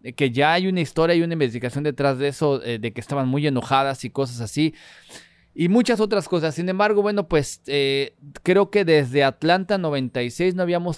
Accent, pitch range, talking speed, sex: Mexican, 130-165 Hz, 195 wpm, male